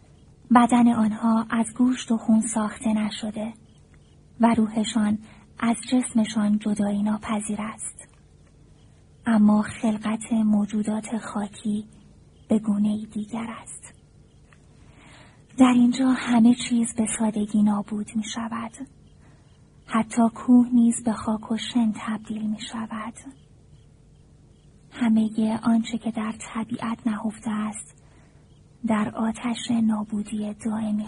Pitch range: 215-230 Hz